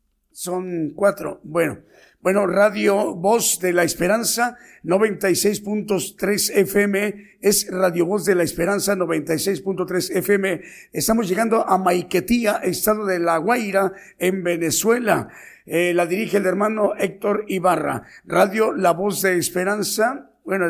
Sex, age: male, 50-69